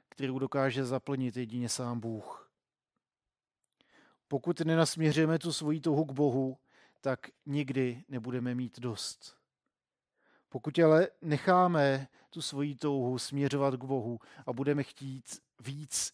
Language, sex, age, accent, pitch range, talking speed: Czech, male, 40-59, native, 130-155 Hz, 115 wpm